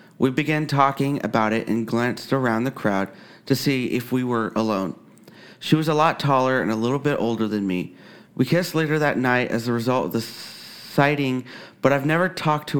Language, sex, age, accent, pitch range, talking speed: English, male, 30-49, American, 110-140 Hz, 205 wpm